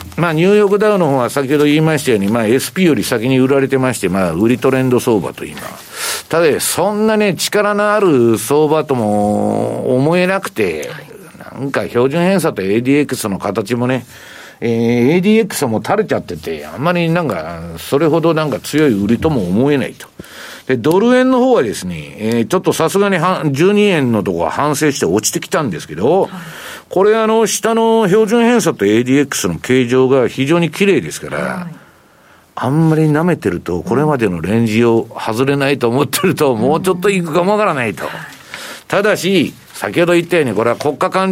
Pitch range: 120-180 Hz